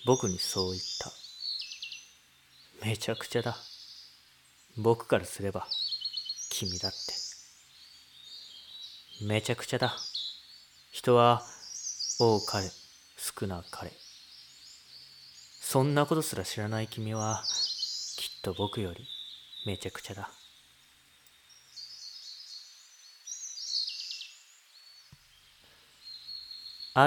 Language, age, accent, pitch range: Japanese, 40-59, native, 75-120 Hz